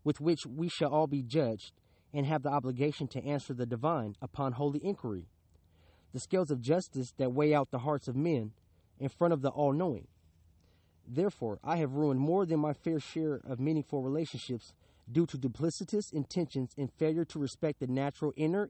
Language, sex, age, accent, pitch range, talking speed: English, male, 30-49, American, 105-155 Hz, 185 wpm